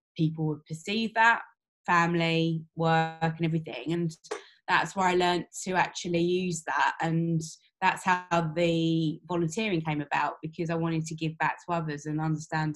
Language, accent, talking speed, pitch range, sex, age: English, British, 160 wpm, 155-175 Hz, female, 20-39